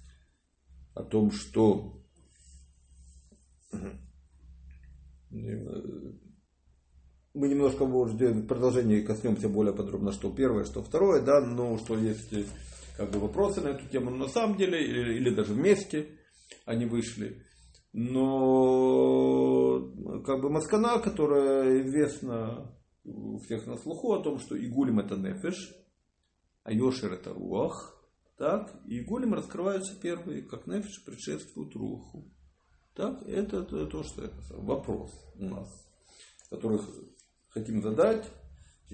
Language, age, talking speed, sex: English, 50-69, 110 wpm, male